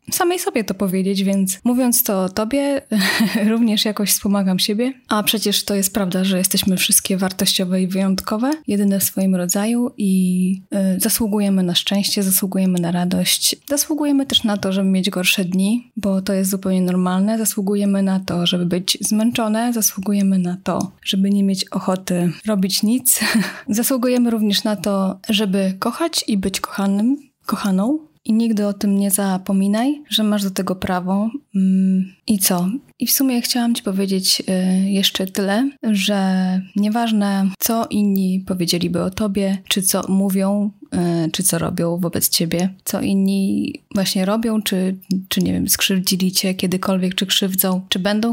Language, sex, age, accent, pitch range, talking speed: Polish, female, 20-39, native, 190-220 Hz, 155 wpm